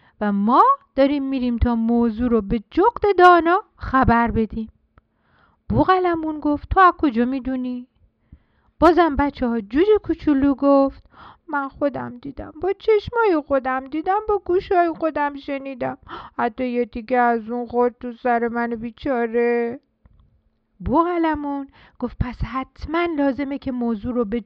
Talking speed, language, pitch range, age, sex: 130 wpm, Persian, 220-305 Hz, 50-69, female